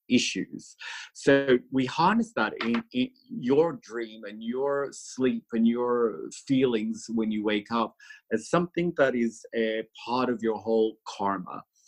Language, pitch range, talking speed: English, 110-135 Hz, 145 wpm